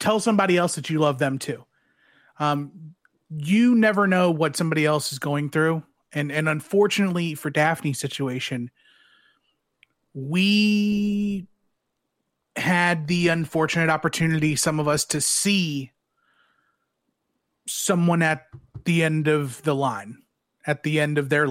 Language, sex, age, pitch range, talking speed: English, male, 30-49, 140-175 Hz, 130 wpm